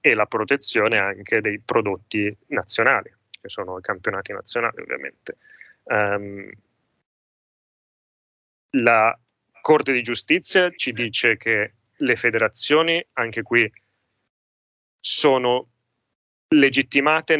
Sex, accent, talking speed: male, native, 95 wpm